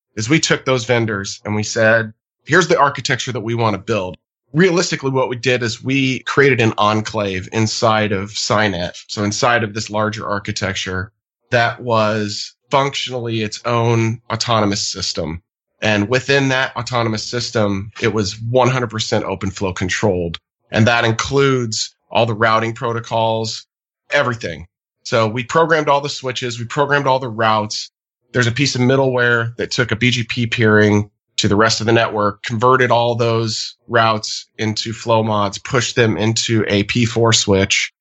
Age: 30-49